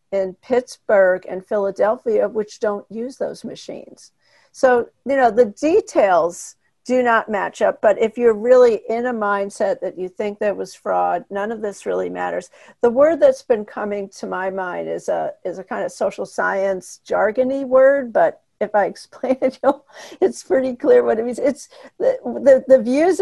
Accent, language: American, English